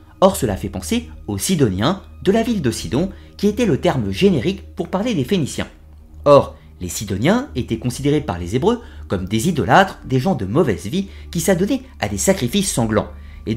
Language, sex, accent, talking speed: French, male, French, 190 wpm